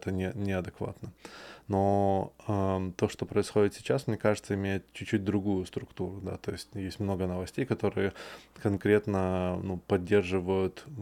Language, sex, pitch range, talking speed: Russian, male, 95-105 Hz, 130 wpm